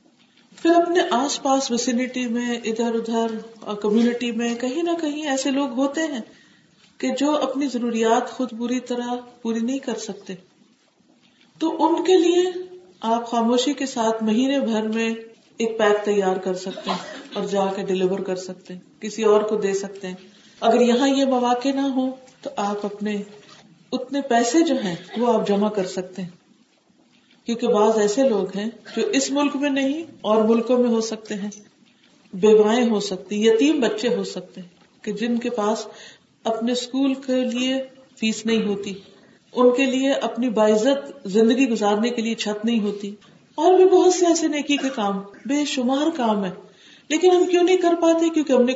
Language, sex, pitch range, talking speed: Urdu, female, 210-275 Hz, 175 wpm